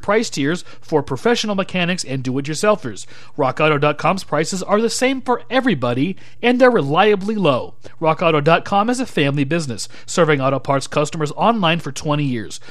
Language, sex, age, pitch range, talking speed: English, male, 40-59, 145-205 Hz, 145 wpm